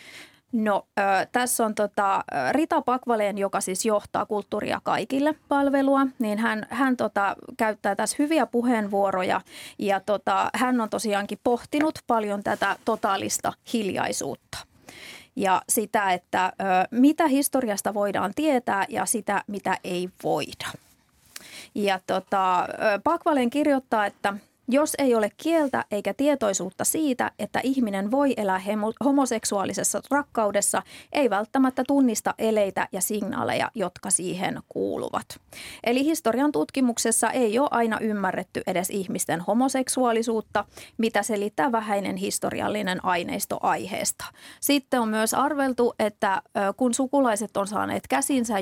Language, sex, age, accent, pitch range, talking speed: Finnish, female, 30-49, native, 200-260 Hz, 120 wpm